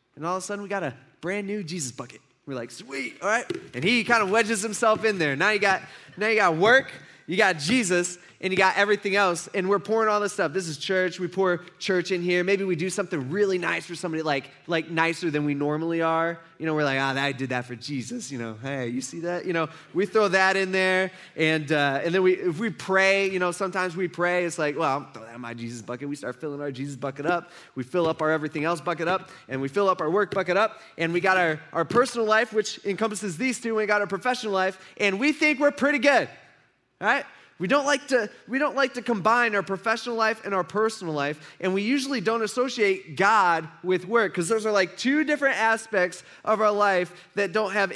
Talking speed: 250 wpm